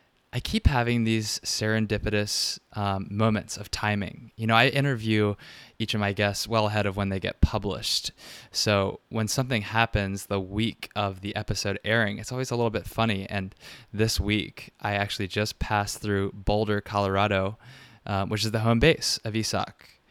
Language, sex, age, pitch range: English, male, 20-39, 100-115 Hz